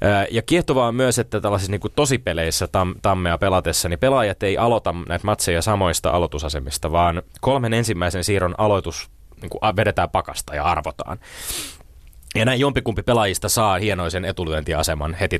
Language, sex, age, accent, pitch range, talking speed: Finnish, male, 20-39, native, 85-115 Hz, 135 wpm